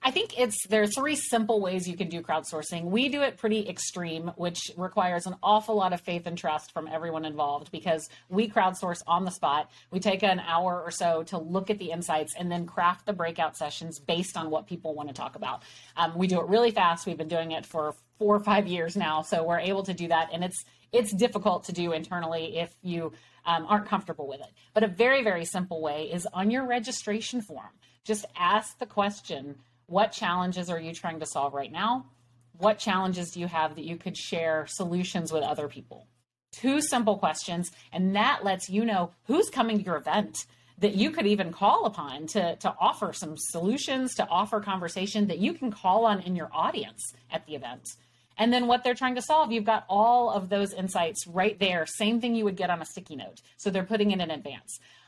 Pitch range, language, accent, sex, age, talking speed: 165-215 Hz, English, American, female, 30-49, 215 wpm